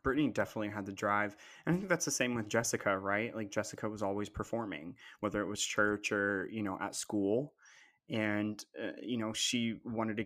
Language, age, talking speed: English, 20-39, 205 wpm